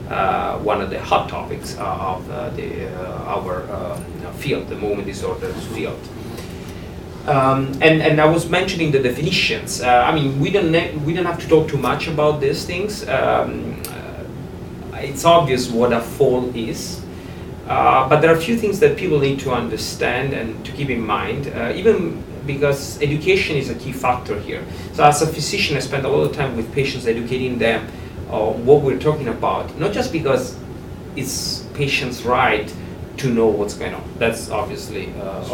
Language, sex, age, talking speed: English, male, 40-59, 180 wpm